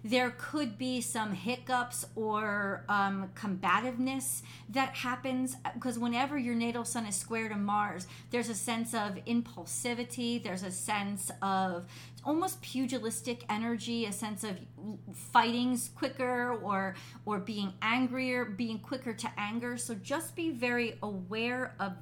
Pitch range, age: 200-245 Hz, 40-59